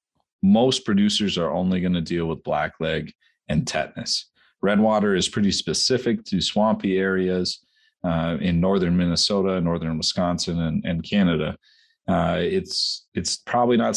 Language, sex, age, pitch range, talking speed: English, male, 30-49, 85-110 Hz, 135 wpm